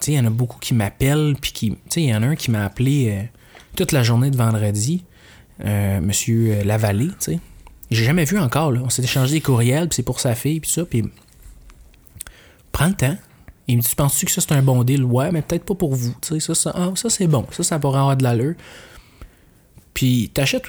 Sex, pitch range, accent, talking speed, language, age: male, 115-145 Hz, Canadian, 230 wpm, French, 20-39